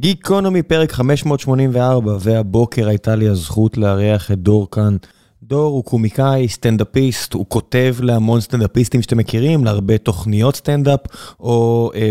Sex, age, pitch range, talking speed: male, 20-39, 110-140 Hz, 130 wpm